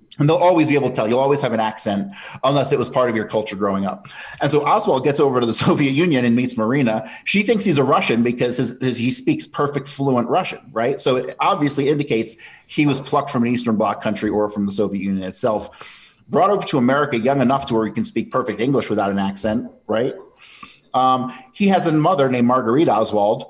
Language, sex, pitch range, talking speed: English, male, 115-145 Hz, 225 wpm